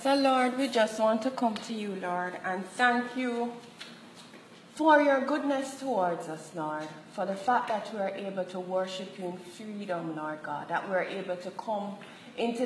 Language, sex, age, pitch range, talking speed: English, female, 30-49, 175-230 Hz, 190 wpm